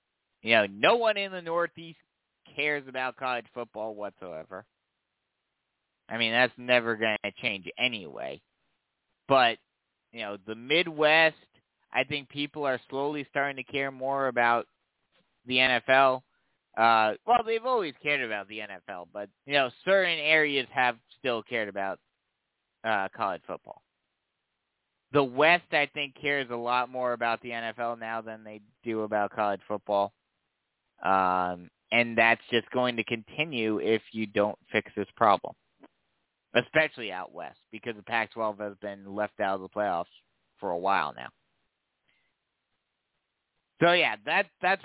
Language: English